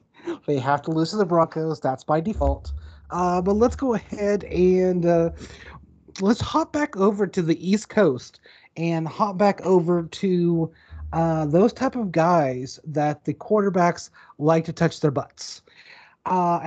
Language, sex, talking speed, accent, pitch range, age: English, male, 160 wpm, American, 150-210 Hz, 30-49